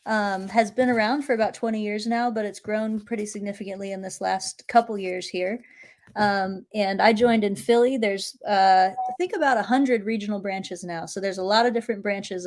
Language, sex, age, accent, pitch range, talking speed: English, female, 20-39, American, 185-225 Hz, 205 wpm